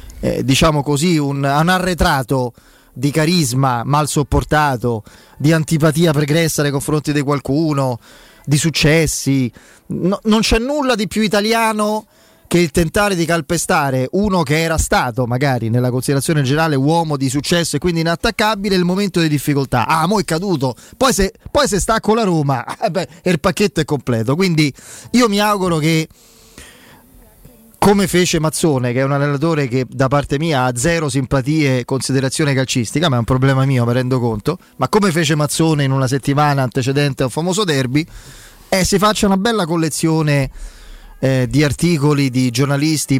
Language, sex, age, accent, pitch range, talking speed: Italian, male, 30-49, native, 135-180 Hz, 165 wpm